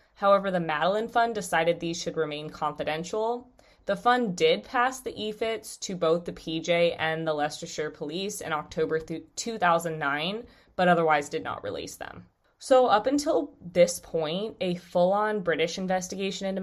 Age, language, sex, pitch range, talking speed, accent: 20-39, English, female, 160-200 Hz, 150 wpm, American